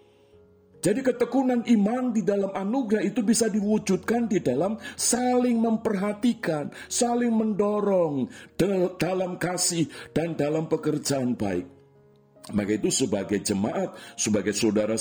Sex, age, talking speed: male, 50-69, 110 wpm